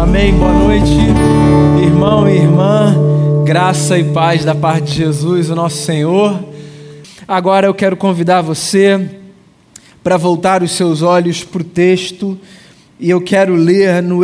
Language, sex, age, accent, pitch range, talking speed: Portuguese, male, 20-39, Brazilian, 155-190 Hz, 145 wpm